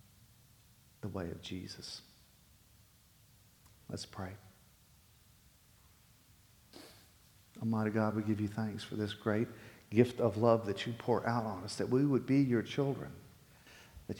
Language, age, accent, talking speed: English, 50-69, American, 130 wpm